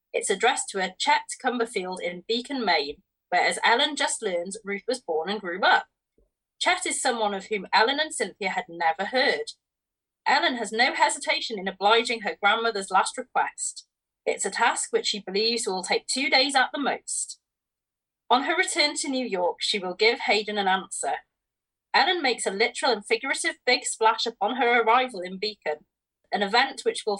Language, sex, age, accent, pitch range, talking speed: English, female, 30-49, British, 200-270 Hz, 185 wpm